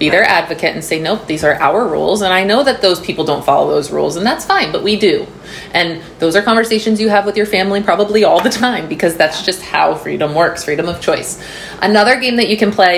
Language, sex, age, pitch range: English, female, 30-49, 175-220 Hz